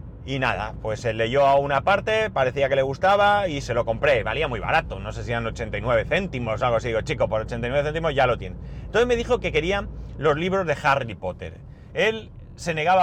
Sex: male